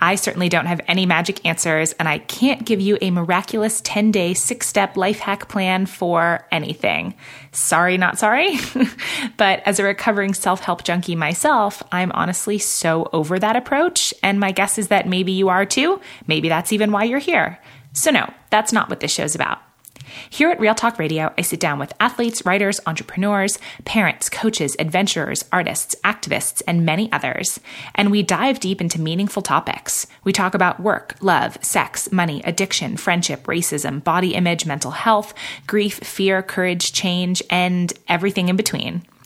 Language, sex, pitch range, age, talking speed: English, female, 170-210 Hz, 20-39, 165 wpm